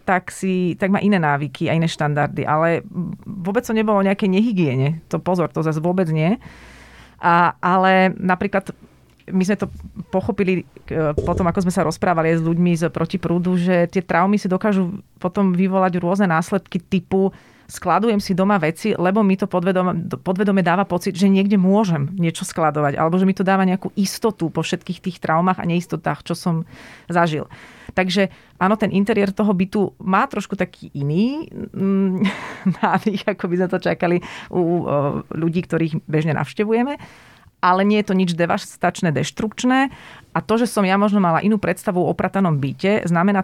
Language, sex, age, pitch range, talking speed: Slovak, female, 30-49, 170-200 Hz, 170 wpm